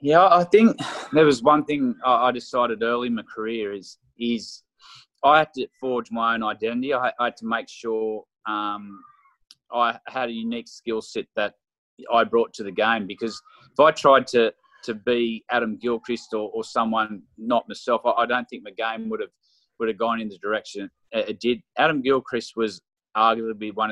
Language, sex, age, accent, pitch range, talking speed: English, male, 20-39, Australian, 110-130 Hz, 185 wpm